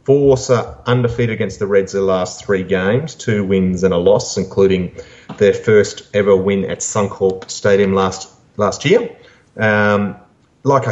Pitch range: 100-115 Hz